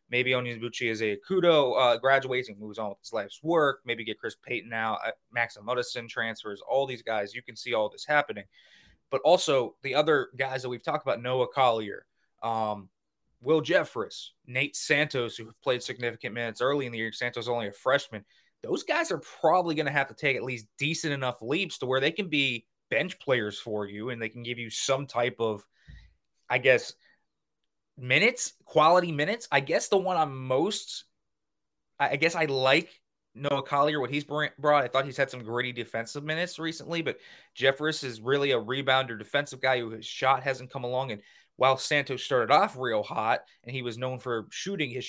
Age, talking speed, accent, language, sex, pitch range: 20-39, 200 wpm, American, English, male, 115-145 Hz